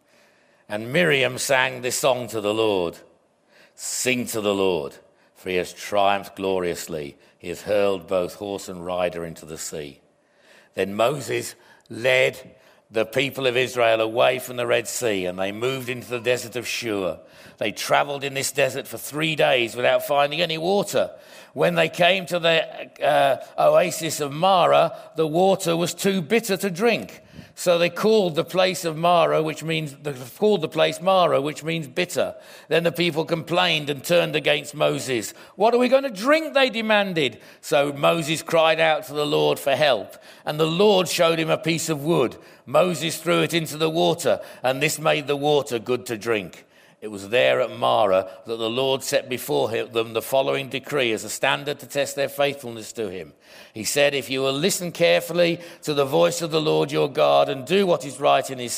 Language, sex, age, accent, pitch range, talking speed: English, male, 50-69, British, 115-170 Hz, 185 wpm